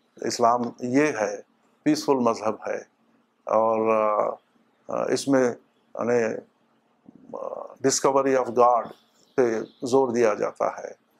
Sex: male